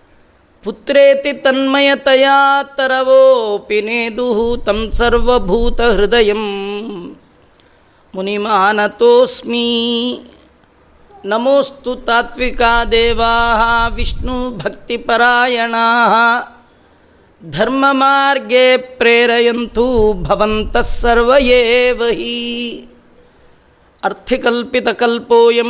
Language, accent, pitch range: Kannada, native, 230-245 Hz